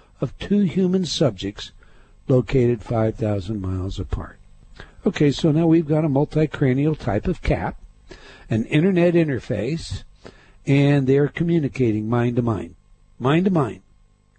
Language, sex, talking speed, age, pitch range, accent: English, male, 110 wpm, 60-79, 115-175 Hz, American